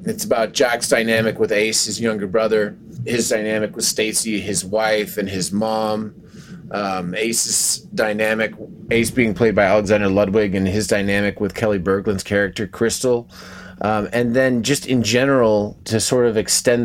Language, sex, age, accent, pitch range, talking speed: English, male, 30-49, American, 100-120 Hz, 160 wpm